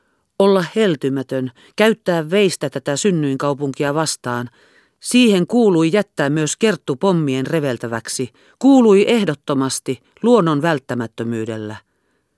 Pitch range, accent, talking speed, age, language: 130-180 Hz, native, 85 wpm, 50-69, Finnish